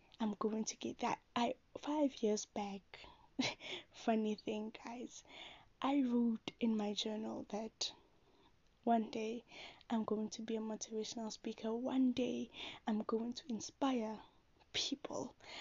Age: 10-29